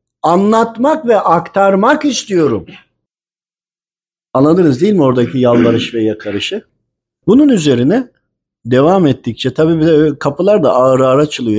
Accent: native